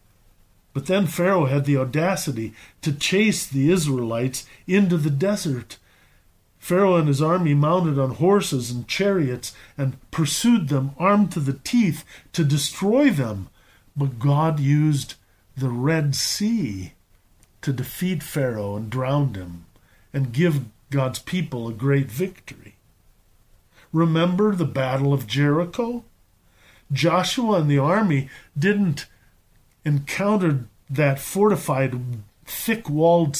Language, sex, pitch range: English, male, 120-175 Hz